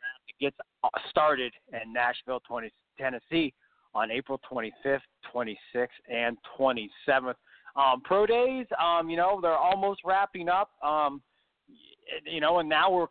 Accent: American